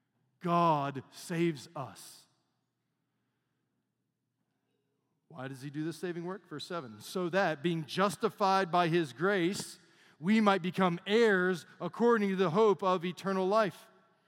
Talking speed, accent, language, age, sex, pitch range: 125 wpm, American, English, 40-59, male, 175-230 Hz